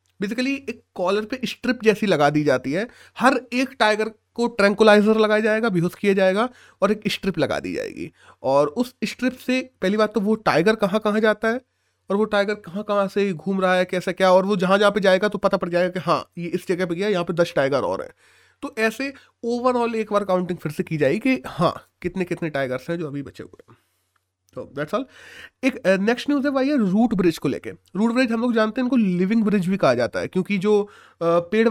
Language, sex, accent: Hindi, male, native